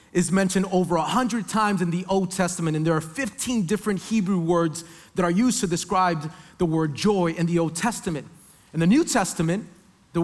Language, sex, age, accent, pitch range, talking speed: English, male, 30-49, American, 175-235 Hz, 195 wpm